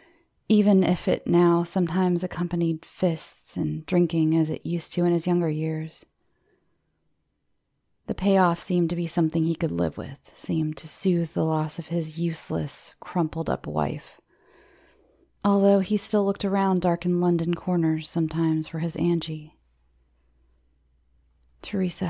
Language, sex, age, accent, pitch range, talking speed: English, female, 30-49, American, 150-175 Hz, 135 wpm